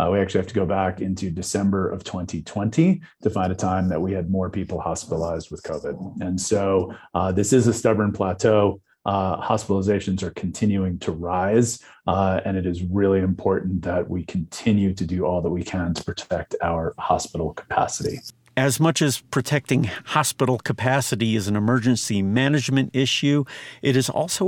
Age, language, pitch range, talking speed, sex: 40-59, English, 100-130 Hz, 175 wpm, male